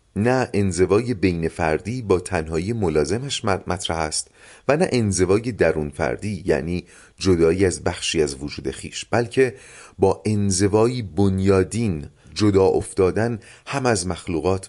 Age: 30-49